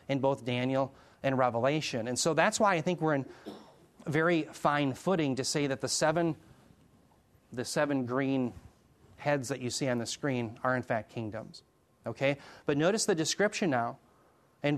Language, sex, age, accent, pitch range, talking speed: English, male, 30-49, American, 125-155 Hz, 170 wpm